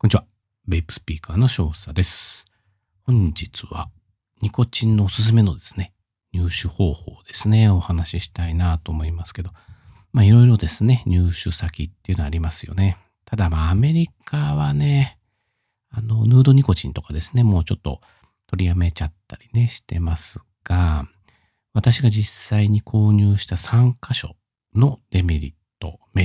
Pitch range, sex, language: 85-115 Hz, male, Japanese